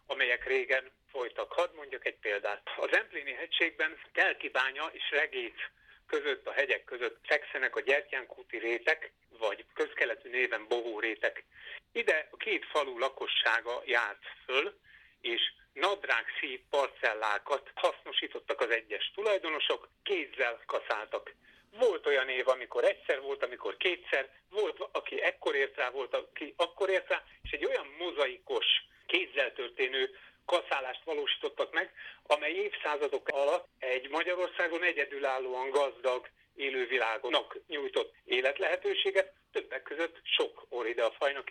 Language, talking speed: Hungarian, 120 wpm